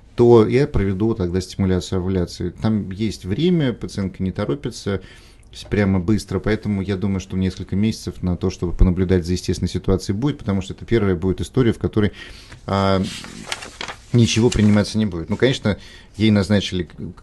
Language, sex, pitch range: Russian, male, 95-115 Hz